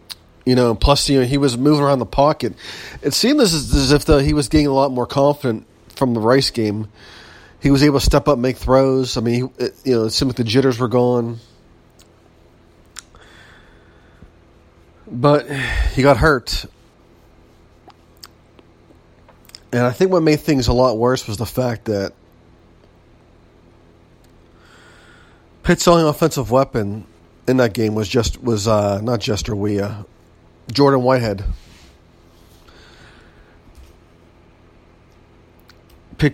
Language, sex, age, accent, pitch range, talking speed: English, male, 40-59, American, 85-130 Hz, 135 wpm